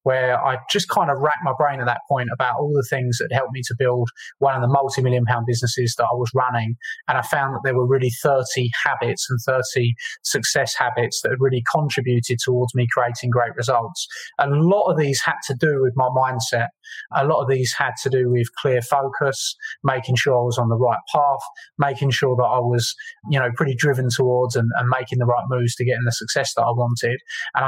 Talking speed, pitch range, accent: 230 wpm, 120-140 Hz, British